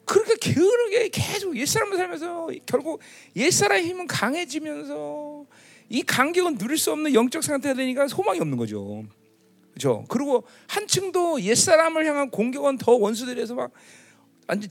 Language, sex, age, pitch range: Korean, male, 40-59, 230-360 Hz